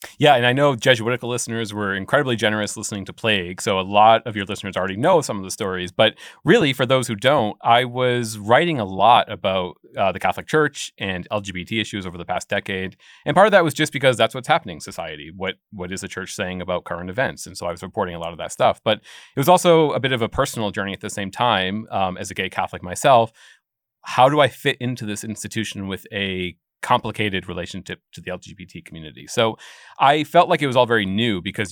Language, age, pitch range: English, 30-49, 95-120 Hz